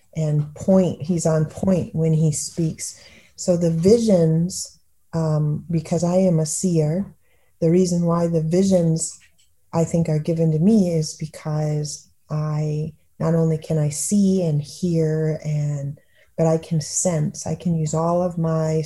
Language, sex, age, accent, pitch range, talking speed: English, female, 30-49, American, 150-175 Hz, 155 wpm